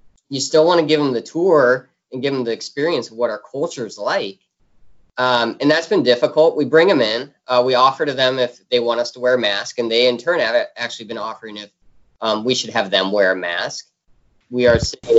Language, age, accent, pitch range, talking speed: English, 20-39, American, 105-145 Hz, 235 wpm